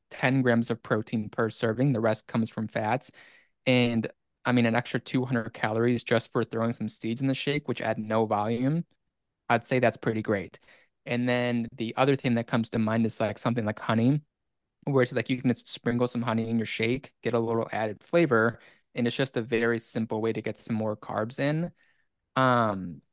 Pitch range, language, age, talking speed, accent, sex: 115-130 Hz, English, 20-39, 210 wpm, American, male